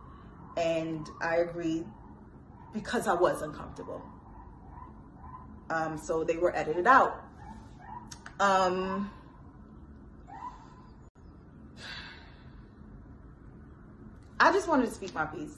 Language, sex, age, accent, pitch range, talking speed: English, female, 20-39, American, 150-195 Hz, 80 wpm